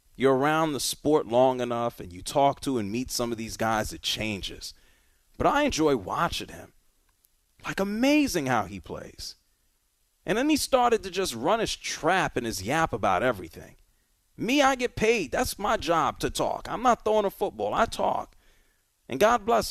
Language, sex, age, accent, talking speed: English, male, 30-49, American, 185 wpm